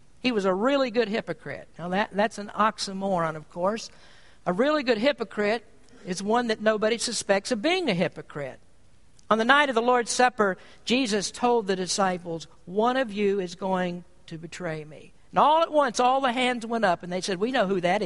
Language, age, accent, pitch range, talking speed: English, 60-79, American, 180-250 Hz, 205 wpm